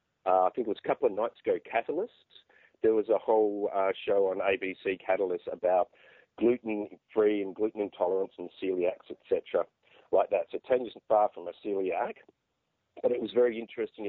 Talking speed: 175 wpm